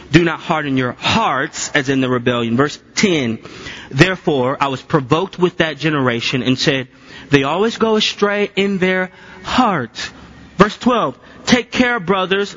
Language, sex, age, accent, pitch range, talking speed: English, male, 30-49, American, 160-245 Hz, 155 wpm